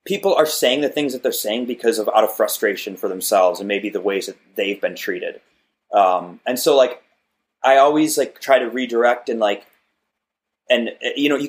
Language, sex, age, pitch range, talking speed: English, male, 20-39, 105-150 Hz, 205 wpm